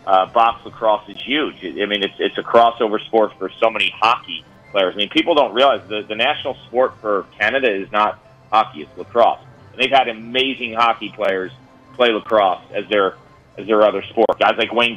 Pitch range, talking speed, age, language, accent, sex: 100-125 Hz, 200 wpm, 40-59, English, American, male